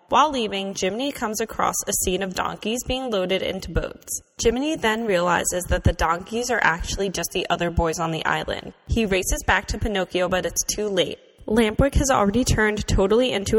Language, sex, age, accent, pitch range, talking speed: English, female, 10-29, American, 175-215 Hz, 190 wpm